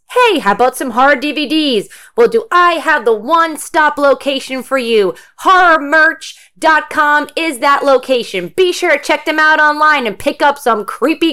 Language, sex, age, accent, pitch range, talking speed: English, female, 20-39, American, 180-280 Hz, 165 wpm